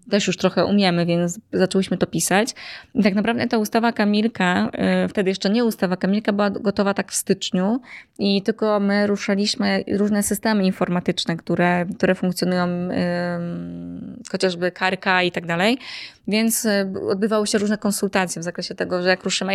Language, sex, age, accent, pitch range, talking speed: Polish, female, 20-39, native, 185-210 Hz, 155 wpm